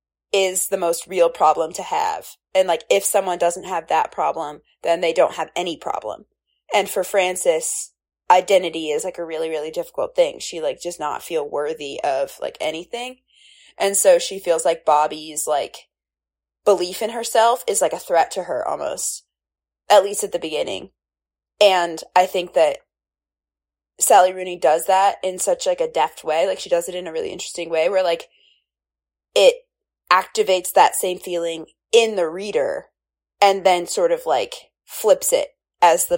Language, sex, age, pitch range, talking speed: English, female, 20-39, 150-205 Hz, 175 wpm